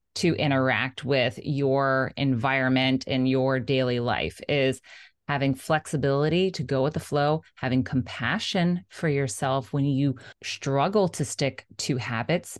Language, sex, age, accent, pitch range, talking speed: English, female, 20-39, American, 135-165 Hz, 135 wpm